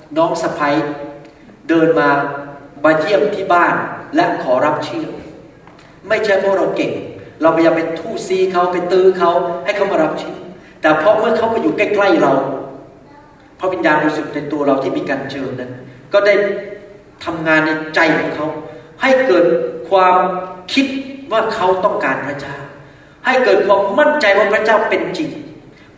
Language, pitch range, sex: Thai, 160-220 Hz, male